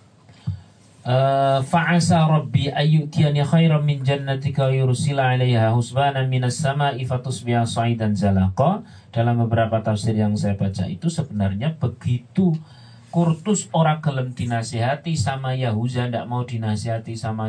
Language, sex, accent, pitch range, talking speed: Indonesian, male, native, 115-145 Hz, 115 wpm